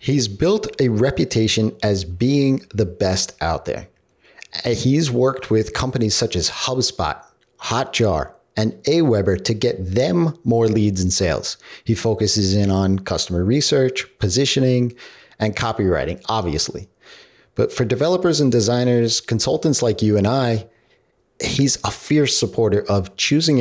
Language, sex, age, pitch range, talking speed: English, male, 40-59, 100-130 Hz, 135 wpm